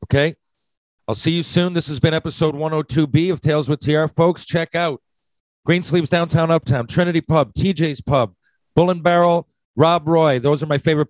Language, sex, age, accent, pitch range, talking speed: English, male, 40-59, American, 125-160 Hz, 180 wpm